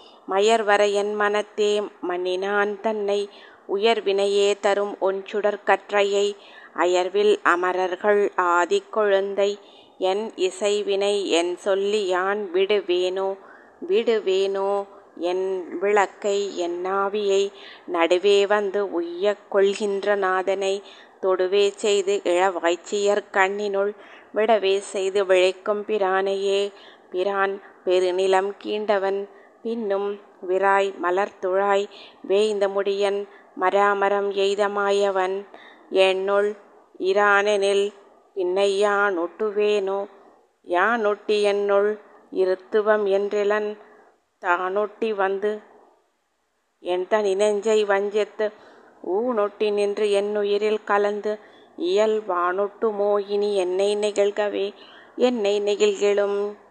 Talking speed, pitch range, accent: 75 wpm, 195-210 Hz, native